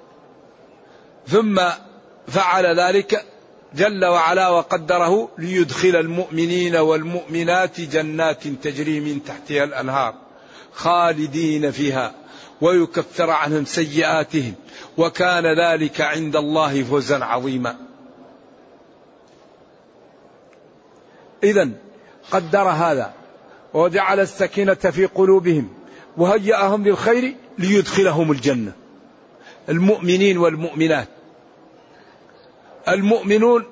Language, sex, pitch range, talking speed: Arabic, male, 160-200 Hz, 70 wpm